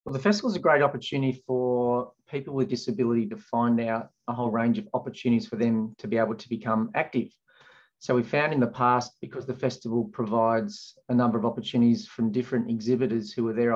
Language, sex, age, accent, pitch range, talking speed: English, male, 30-49, Australian, 115-130 Hz, 205 wpm